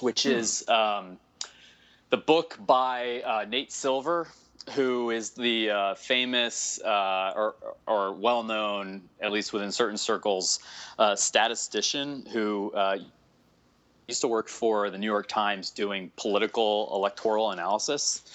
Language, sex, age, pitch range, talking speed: English, male, 20-39, 95-120 Hz, 130 wpm